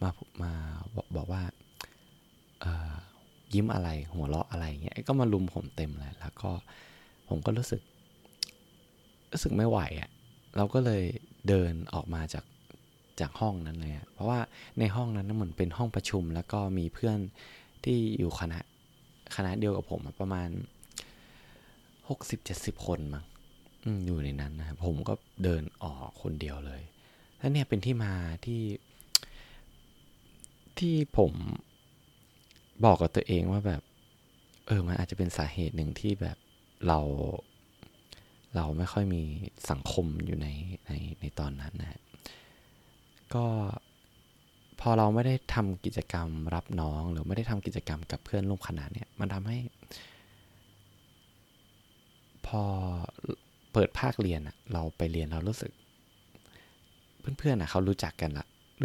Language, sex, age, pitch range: Thai, male, 20-39, 80-110 Hz